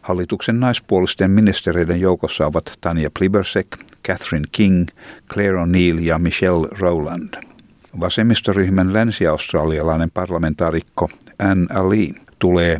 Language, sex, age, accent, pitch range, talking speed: Finnish, male, 60-79, native, 85-100 Hz, 95 wpm